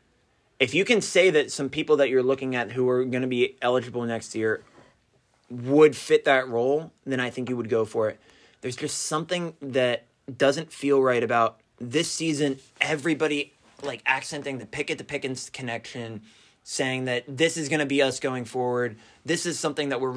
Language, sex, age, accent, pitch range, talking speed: English, male, 20-39, American, 120-145 Hz, 185 wpm